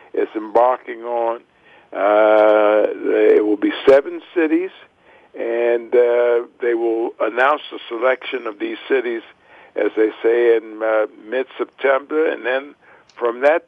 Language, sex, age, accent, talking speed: English, male, 60-79, American, 130 wpm